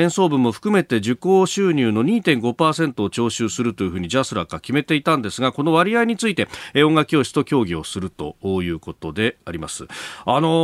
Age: 40-59